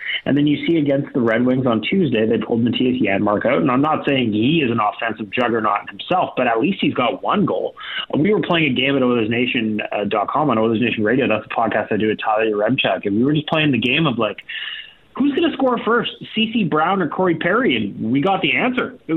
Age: 30-49